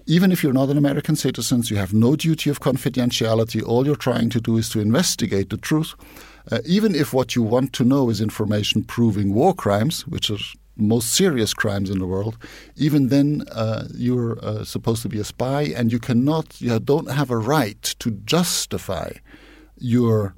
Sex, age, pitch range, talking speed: male, 50-69, 105-130 Hz, 190 wpm